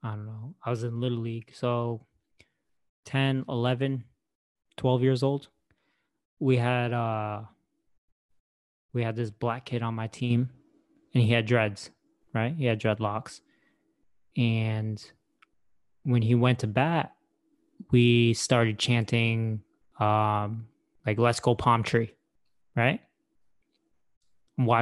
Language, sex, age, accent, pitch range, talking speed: English, male, 20-39, American, 115-130 Hz, 120 wpm